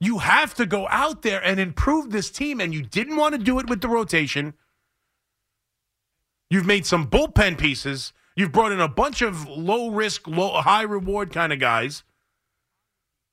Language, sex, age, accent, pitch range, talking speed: English, male, 40-59, American, 130-195 Hz, 160 wpm